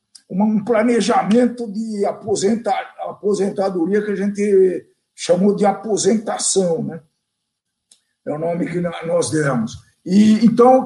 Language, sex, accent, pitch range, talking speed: Portuguese, male, Brazilian, 200-250 Hz, 105 wpm